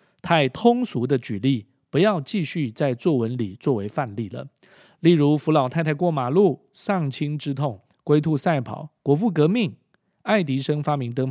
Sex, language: male, Chinese